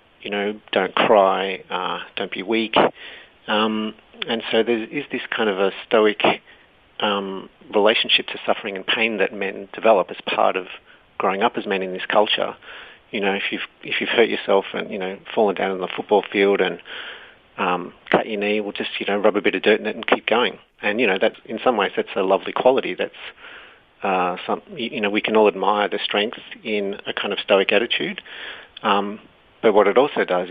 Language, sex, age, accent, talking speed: English, male, 40-59, Australian, 210 wpm